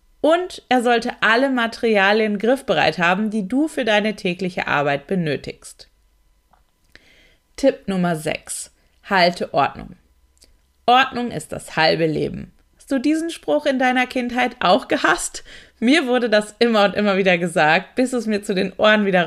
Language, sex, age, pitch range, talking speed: German, female, 30-49, 185-250 Hz, 150 wpm